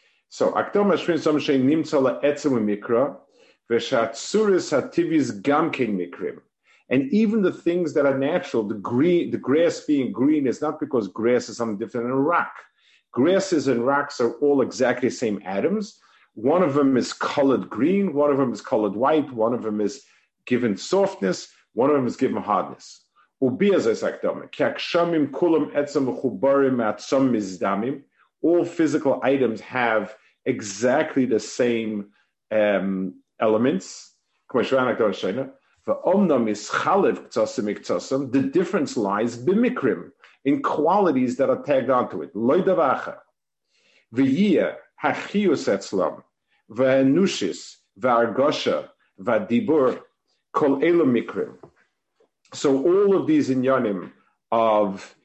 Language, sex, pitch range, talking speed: English, male, 115-175 Hz, 95 wpm